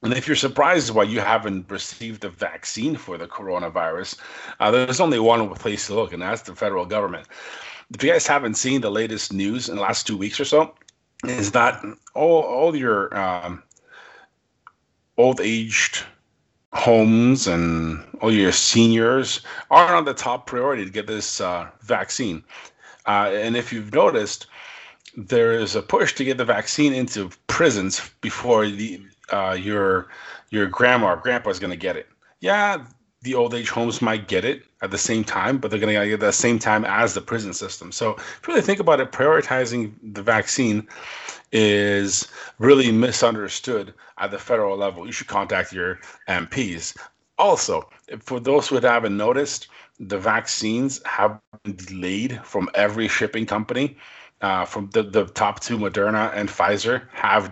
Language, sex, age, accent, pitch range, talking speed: English, male, 30-49, American, 105-135 Hz, 170 wpm